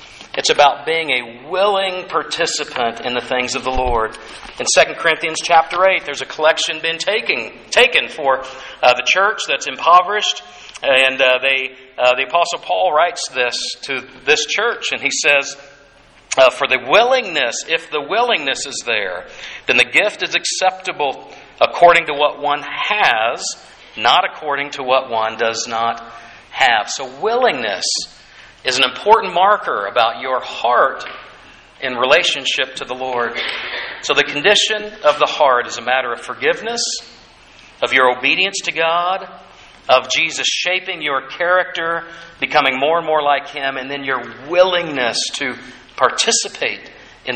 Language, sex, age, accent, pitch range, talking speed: English, male, 50-69, American, 130-175 Hz, 150 wpm